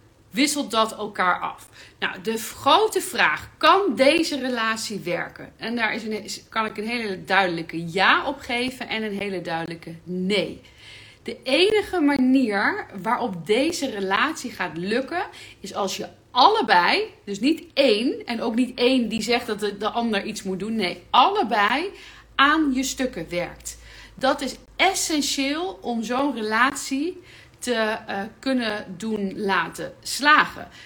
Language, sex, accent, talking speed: Dutch, female, Dutch, 150 wpm